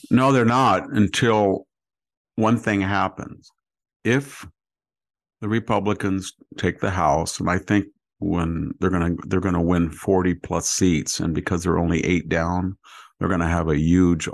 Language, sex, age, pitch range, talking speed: English, male, 50-69, 85-100 Hz, 150 wpm